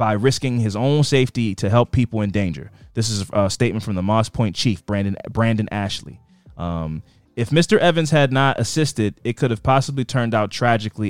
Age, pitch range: 20-39, 100-130 Hz